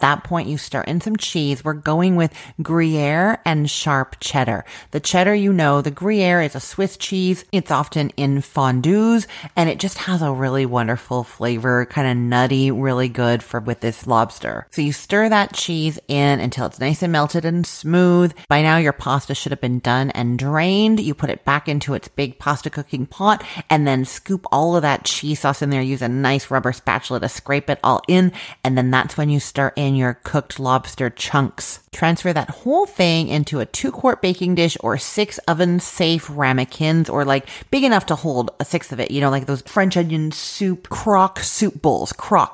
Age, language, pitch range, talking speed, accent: 30-49, English, 130-170 Hz, 205 wpm, American